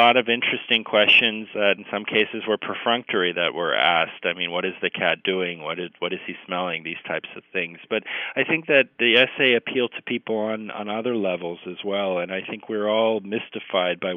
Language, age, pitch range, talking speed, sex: English, 40-59, 90-110 Hz, 215 wpm, male